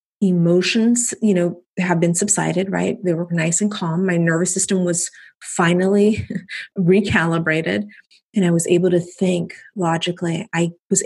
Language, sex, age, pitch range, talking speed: English, female, 30-49, 170-200 Hz, 145 wpm